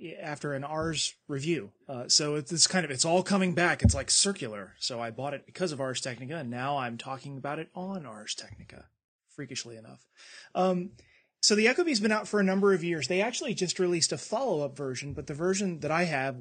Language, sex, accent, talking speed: English, male, American, 225 wpm